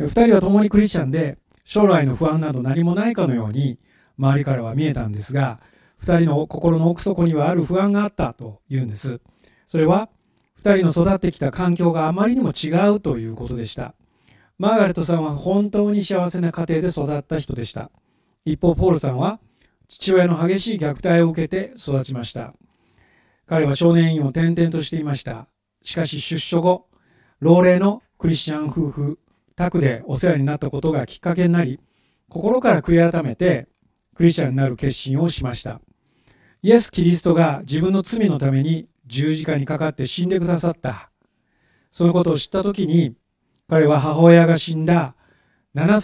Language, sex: Japanese, male